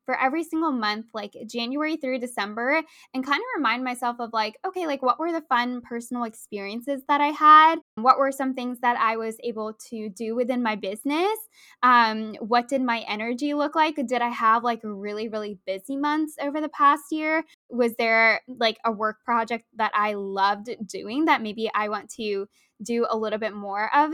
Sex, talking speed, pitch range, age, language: female, 195 wpm, 225-300 Hz, 10-29, English